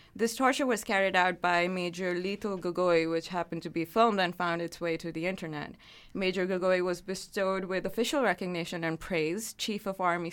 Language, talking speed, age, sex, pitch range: English, 190 wpm, 20-39, female, 170-205 Hz